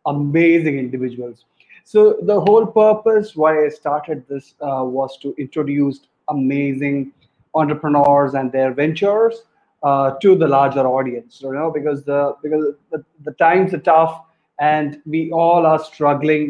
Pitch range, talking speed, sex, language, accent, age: 145-185 Hz, 140 wpm, male, English, Indian, 30-49